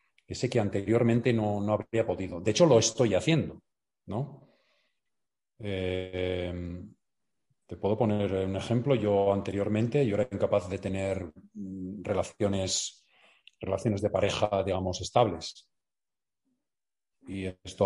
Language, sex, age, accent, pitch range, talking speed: Spanish, male, 40-59, Spanish, 100-125 Hz, 115 wpm